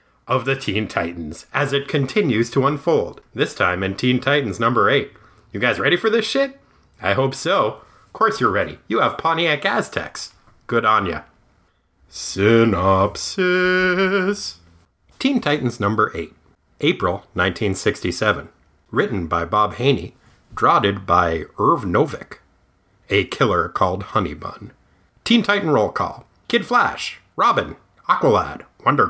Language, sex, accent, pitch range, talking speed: English, male, American, 95-155 Hz, 130 wpm